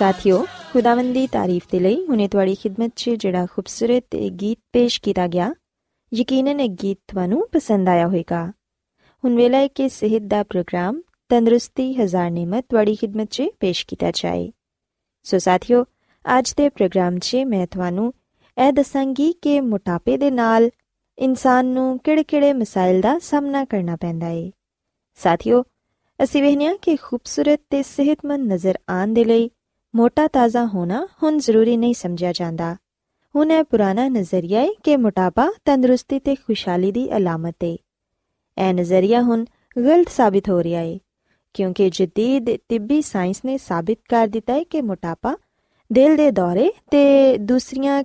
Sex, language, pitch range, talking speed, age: female, Punjabi, 190-270 Hz, 140 wpm, 20-39